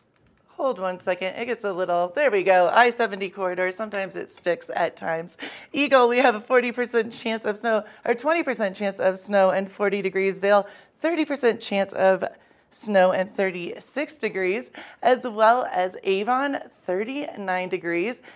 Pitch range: 180-230 Hz